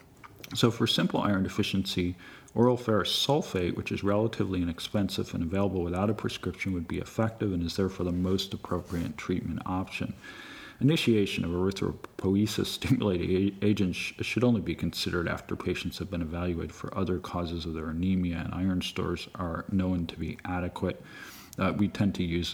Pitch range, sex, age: 85-105 Hz, male, 40-59